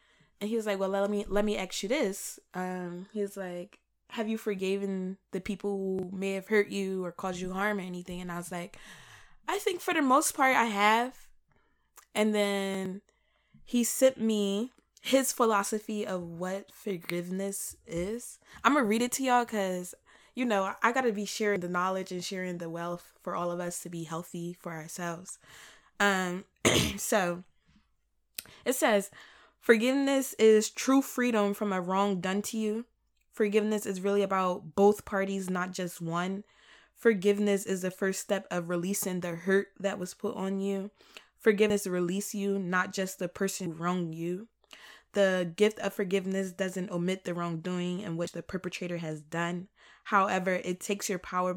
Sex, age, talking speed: female, 20-39, 175 wpm